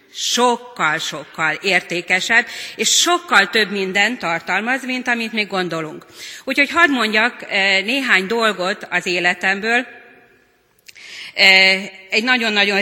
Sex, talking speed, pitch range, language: female, 95 wpm, 185-235 Hz, Hungarian